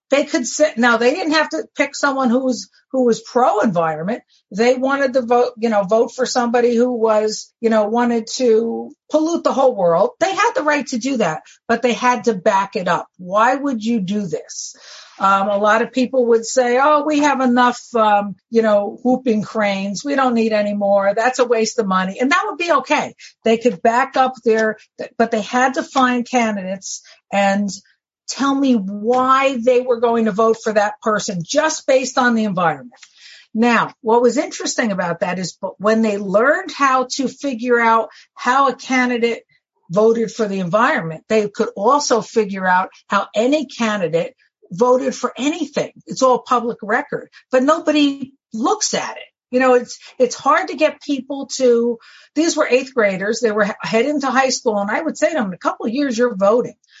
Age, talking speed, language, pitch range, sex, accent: 50-69, 195 wpm, English, 215-265 Hz, female, American